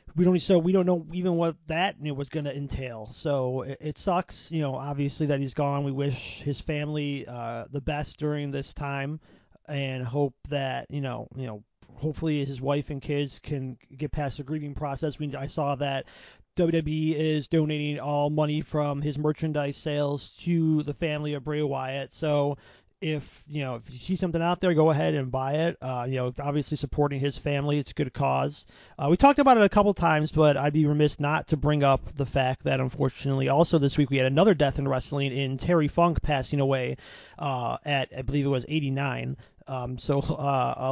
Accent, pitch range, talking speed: American, 135-155 Hz, 205 wpm